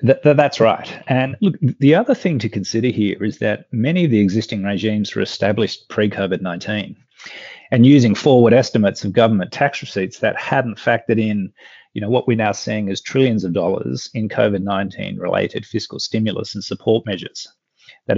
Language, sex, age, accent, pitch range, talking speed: English, male, 30-49, Australian, 100-120 Hz, 170 wpm